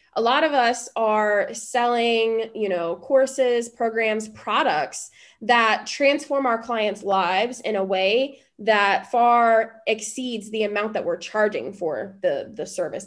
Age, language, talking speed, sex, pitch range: 20-39, English, 140 wpm, female, 210-250 Hz